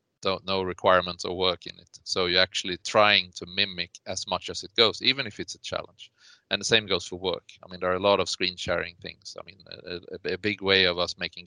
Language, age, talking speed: English, 30-49, 250 wpm